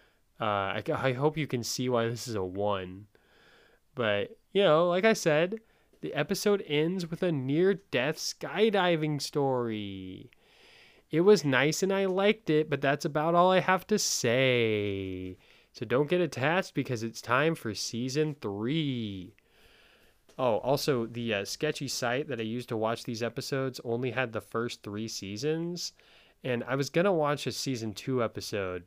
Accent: American